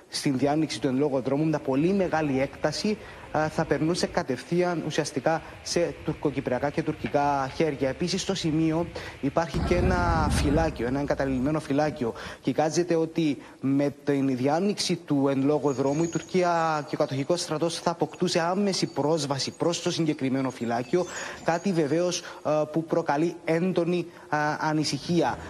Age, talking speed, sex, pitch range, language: 20-39, 135 wpm, male, 140-170 Hz, Greek